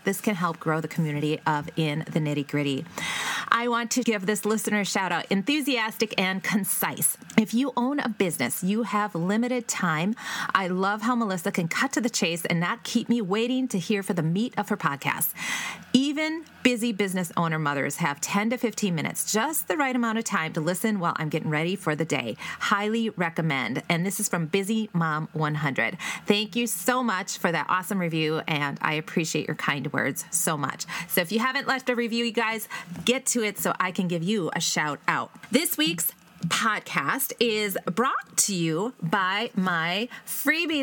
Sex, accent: female, American